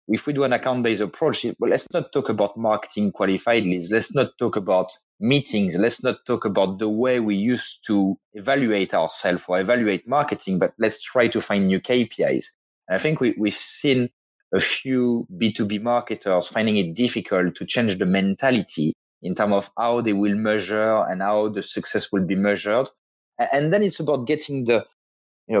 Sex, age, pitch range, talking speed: male, 30-49, 105-130 Hz, 175 wpm